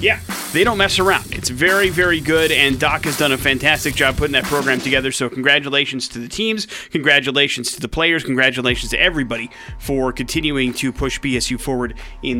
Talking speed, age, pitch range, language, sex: 190 wpm, 30-49, 125-160 Hz, English, male